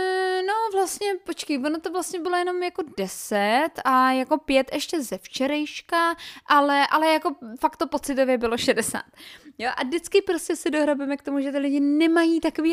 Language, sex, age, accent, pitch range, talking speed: Czech, female, 20-39, native, 240-330 Hz, 170 wpm